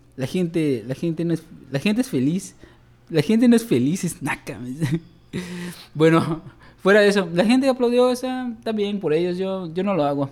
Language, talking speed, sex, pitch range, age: Spanish, 190 wpm, male, 130-190 Hz, 20-39